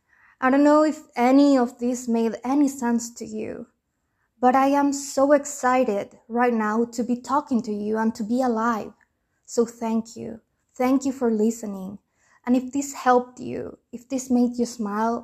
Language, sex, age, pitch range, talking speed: English, female, 20-39, 225-255 Hz, 175 wpm